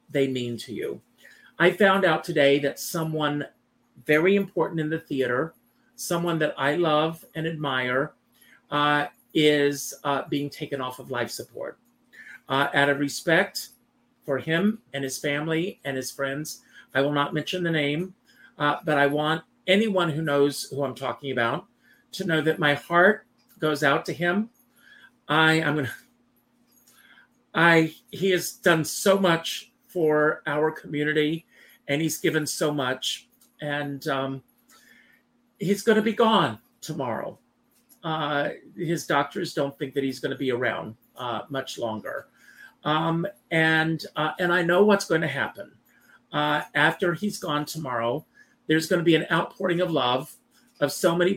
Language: English